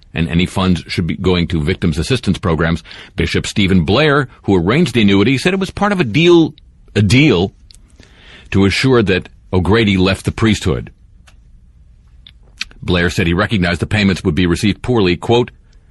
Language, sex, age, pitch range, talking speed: English, male, 50-69, 80-110 Hz, 165 wpm